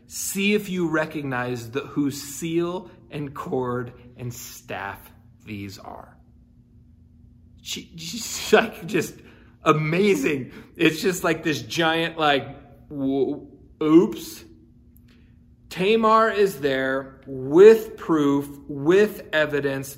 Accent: American